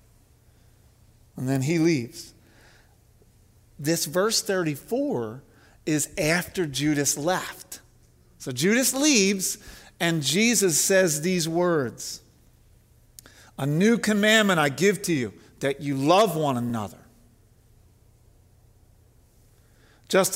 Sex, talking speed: male, 95 wpm